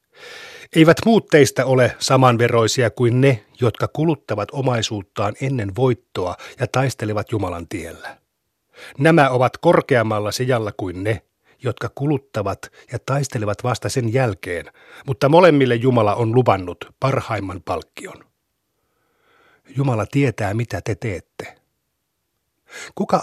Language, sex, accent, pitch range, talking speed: Finnish, male, native, 110-135 Hz, 110 wpm